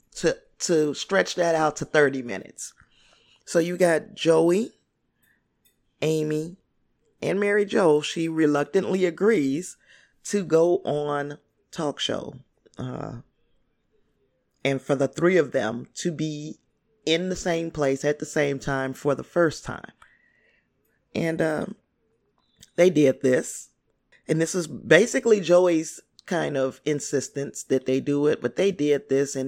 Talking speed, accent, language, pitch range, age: 135 wpm, American, English, 140-175 Hz, 30-49